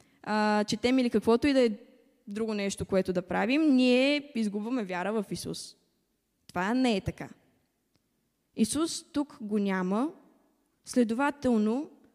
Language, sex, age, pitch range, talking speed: Bulgarian, female, 20-39, 195-255 Hz, 125 wpm